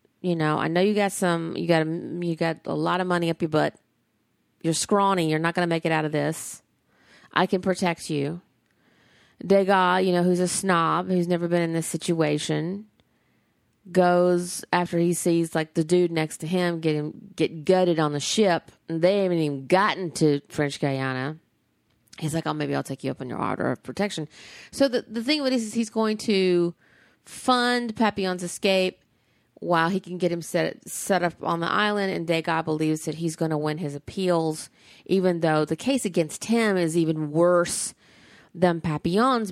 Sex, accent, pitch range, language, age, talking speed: female, American, 155-190 Hz, English, 30-49, 195 wpm